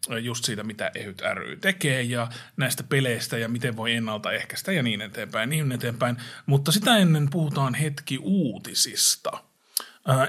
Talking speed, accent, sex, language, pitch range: 150 wpm, native, male, Finnish, 125-155 Hz